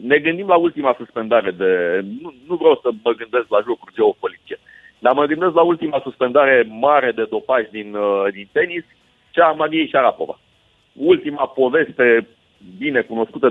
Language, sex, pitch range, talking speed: Romanian, male, 120-165 Hz, 155 wpm